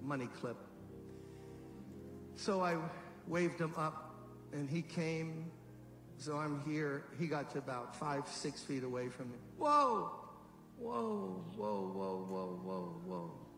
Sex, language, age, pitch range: male, English, 60-79, 120-165 Hz